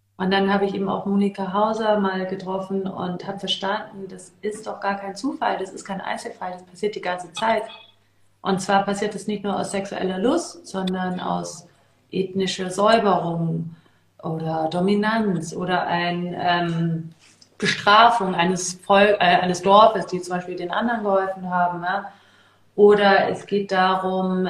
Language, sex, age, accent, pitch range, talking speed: German, female, 30-49, German, 175-200 Hz, 150 wpm